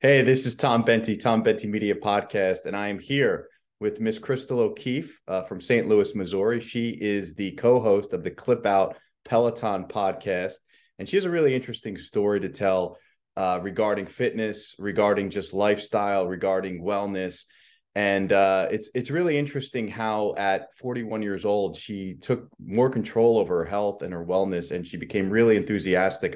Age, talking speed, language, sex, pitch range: 30-49, 170 wpm, English, male, 95-115 Hz